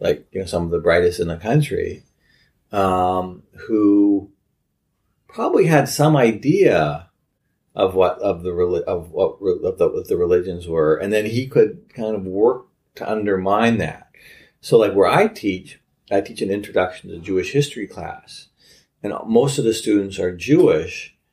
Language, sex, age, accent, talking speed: English, male, 40-59, American, 165 wpm